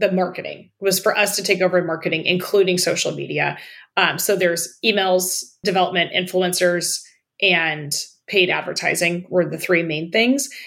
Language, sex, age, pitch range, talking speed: English, female, 20-39, 170-200 Hz, 150 wpm